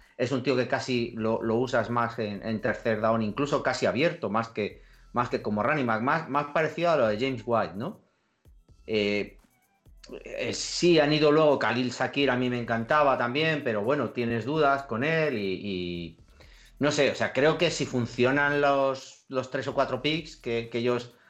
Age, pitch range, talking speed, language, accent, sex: 40-59, 105-135 Hz, 195 wpm, Spanish, Spanish, male